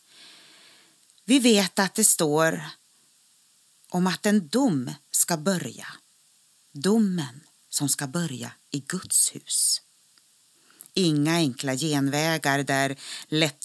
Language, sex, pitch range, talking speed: Swedish, female, 140-180 Hz, 100 wpm